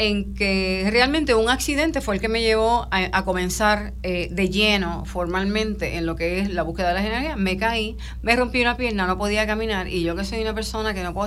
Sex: female